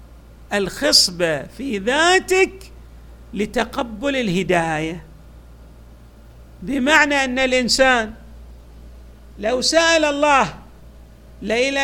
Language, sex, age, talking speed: Arabic, male, 50-69, 60 wpm